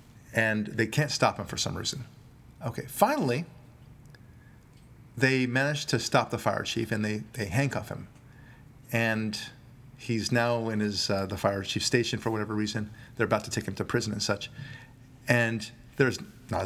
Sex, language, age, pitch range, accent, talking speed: male, English, 40-59, 115-145 Hz, American, 170 wpm